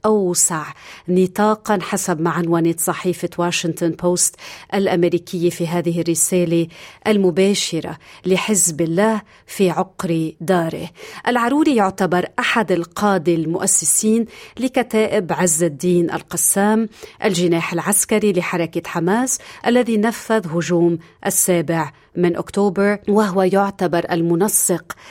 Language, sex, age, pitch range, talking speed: Arabic, female, 40-59, 170-210 Hz, 95 wpm